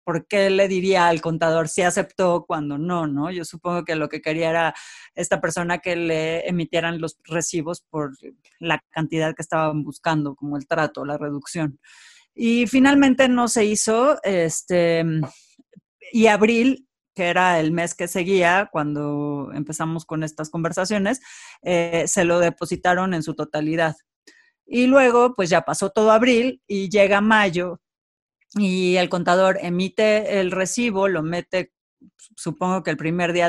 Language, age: Spanish, 30-49